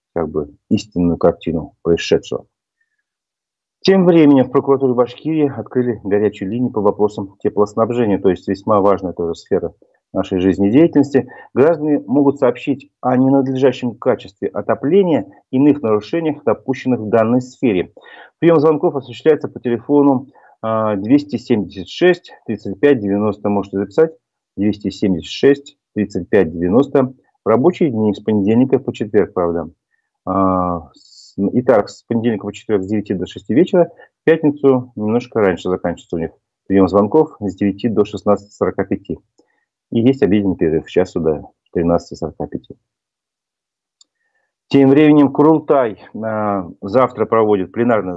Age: 40-59